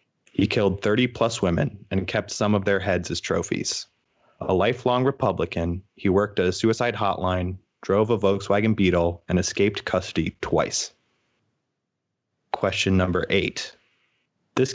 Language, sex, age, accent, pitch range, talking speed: English, male, 30-49, American, 95-110 Hz, 140 wpm